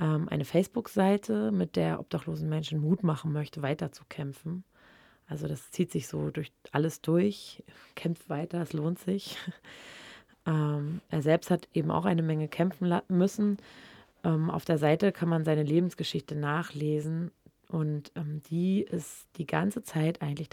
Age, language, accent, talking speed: 20-39, German, German, 135 wpm